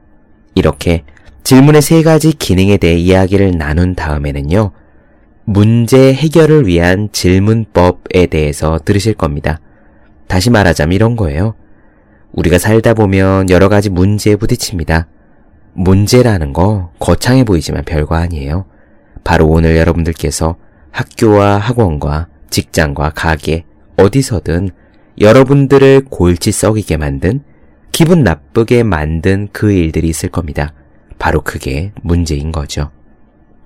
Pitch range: 80-110 Hz